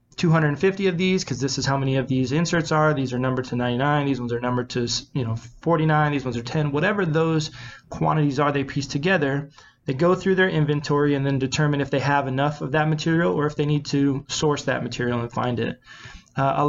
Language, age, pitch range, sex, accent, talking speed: English, 20-39, 135-160 Hz, male, American, 230 wpm